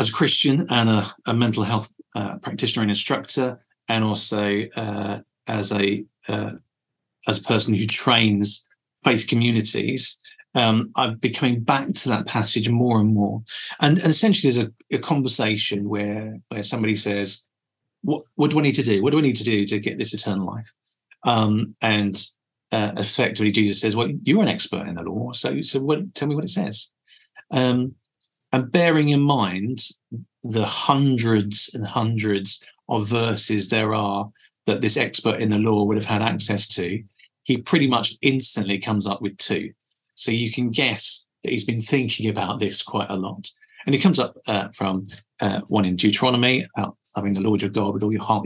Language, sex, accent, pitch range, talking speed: English, male, British, 105-125 Hz, 185 wpm